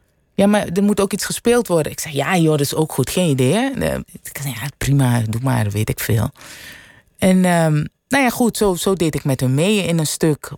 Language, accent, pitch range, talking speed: Dutch, Dutch, 135-185 Hz, 245 wpm